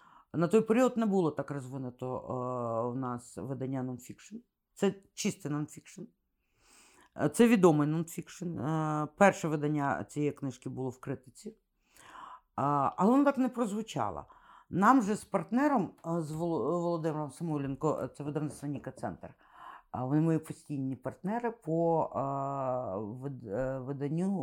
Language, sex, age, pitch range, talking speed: Ukrainian, female, 50-69, 135-180 Hz, 110 wpm